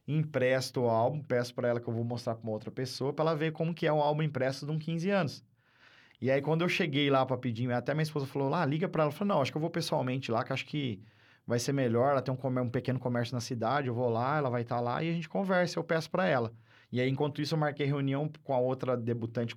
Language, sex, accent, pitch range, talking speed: Portuguese, male, Brazilian, 125-150 Hz, 290 wpm